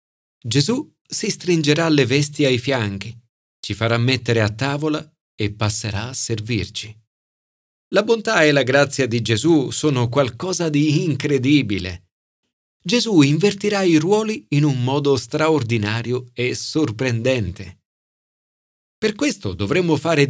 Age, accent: 40-59, native